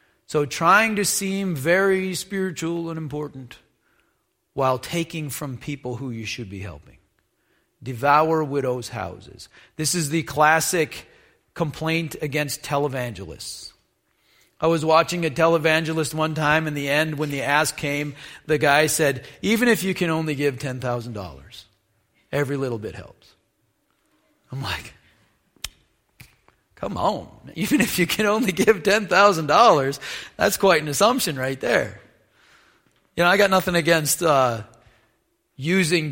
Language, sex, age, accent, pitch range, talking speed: English, male, 40-59, American, 135-170 Hz, 135 wpm